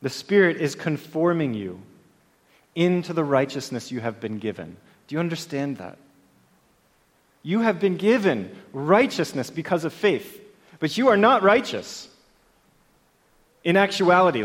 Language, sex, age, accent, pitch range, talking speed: English, male, 30-49, American, 145-185 Hz, 130 wpm